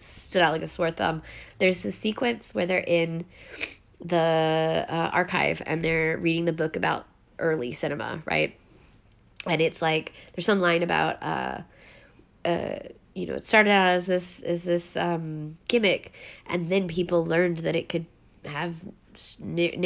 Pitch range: 160-200 Hz